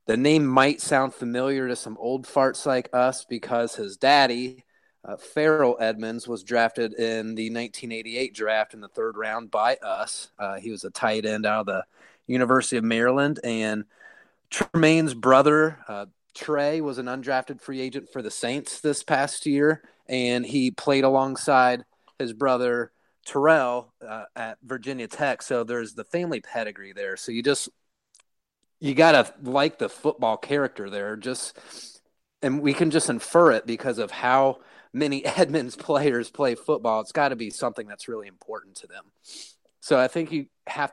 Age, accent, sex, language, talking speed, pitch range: 30-49, American, male, English, 170 wpm, 115-140 Hz